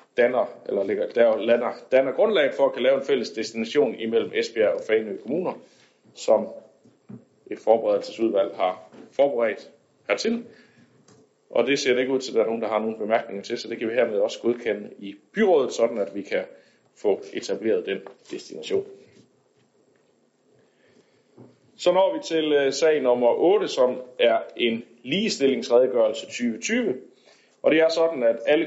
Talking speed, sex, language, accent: 150 wpm, male, Danish, native